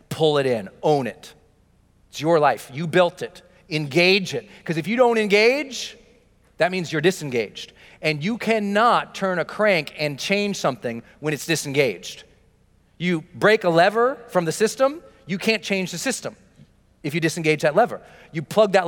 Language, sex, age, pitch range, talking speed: English, male, 40-59, 135-190 Hz, 170 wpm